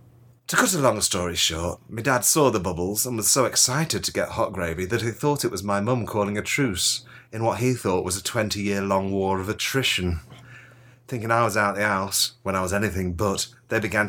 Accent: British